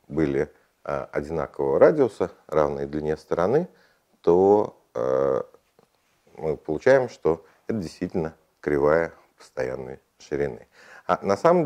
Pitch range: 75-105 Hz